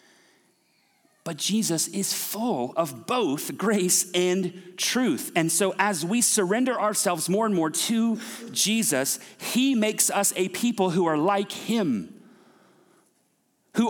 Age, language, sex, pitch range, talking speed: 40-59, English, male, 135-200 Hz, 130 wpm